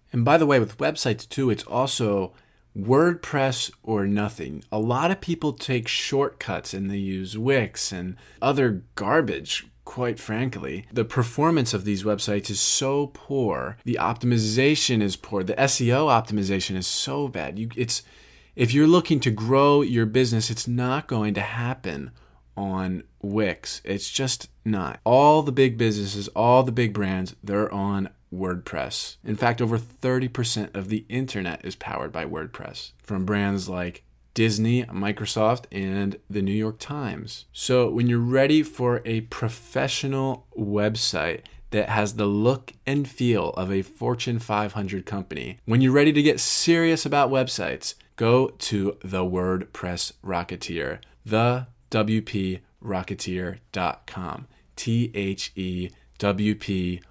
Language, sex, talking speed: English, male, 135 wpm